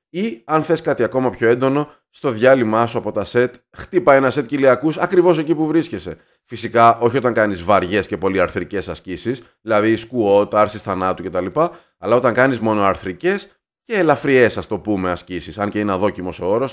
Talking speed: 190 wpm